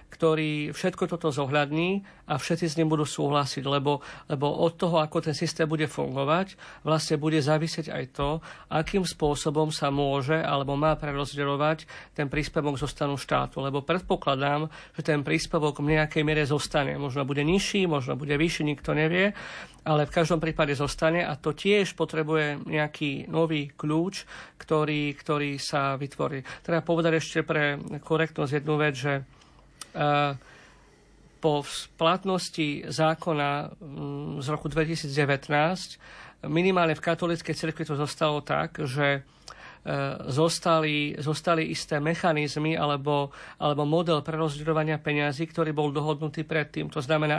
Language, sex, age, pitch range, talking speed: Slovak, male, 50-69, 145-165 Hz, 135 wpm